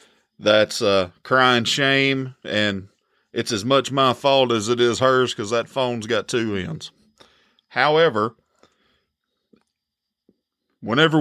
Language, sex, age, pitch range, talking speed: English, male, 40-59, 125-170 Hz, 125 wpm